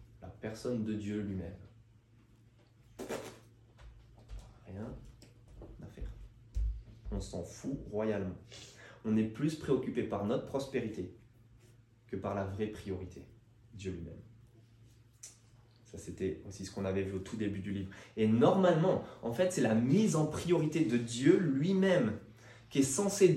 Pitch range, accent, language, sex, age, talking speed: 105-135 Hz, French, French, male, 20-39, 130 wpm